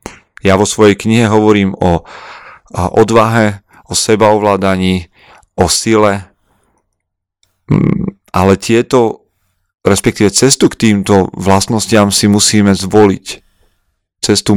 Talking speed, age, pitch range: 90 wpm, 40-59, 100-120 Hz